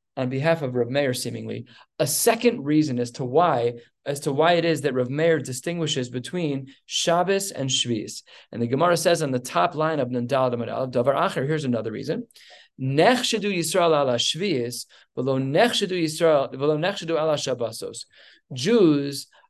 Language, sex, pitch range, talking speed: English, male, 135-170 Hz, 125 wpm